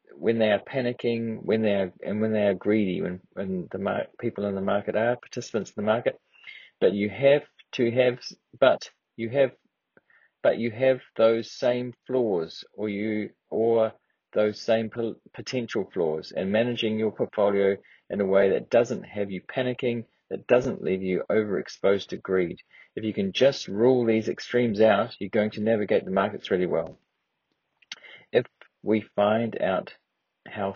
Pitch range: 100-125 Hz